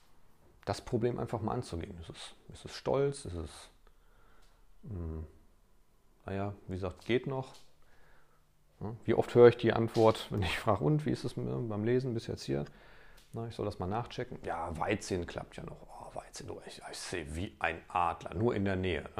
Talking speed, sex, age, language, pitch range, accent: 175 wpm, male, 40-59, German, 85-115 Hz, German